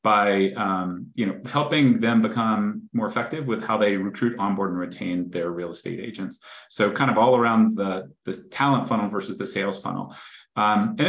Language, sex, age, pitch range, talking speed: English, male, 30-49, 105-125 Hz, 190 wpm